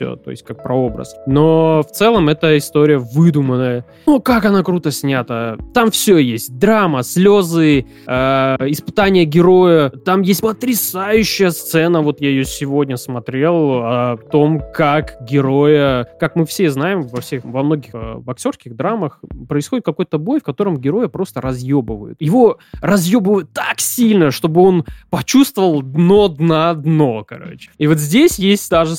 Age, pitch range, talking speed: 20-39, 135-180 Hz, 150 wpm